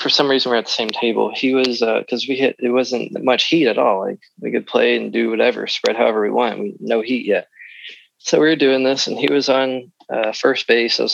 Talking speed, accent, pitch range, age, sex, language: 265 wpm, American, 115-135 Hz, 20-39, male, English